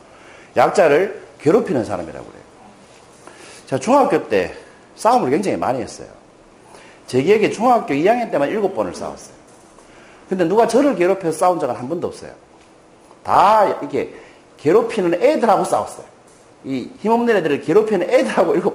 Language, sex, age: Korean, male, 40-59